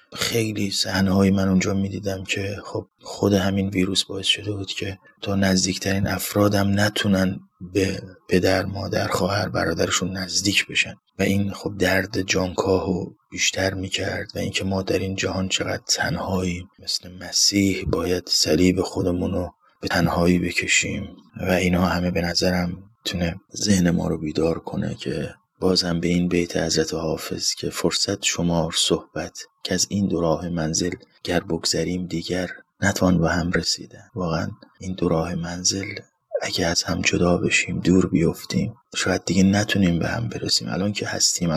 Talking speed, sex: 155 wpm, male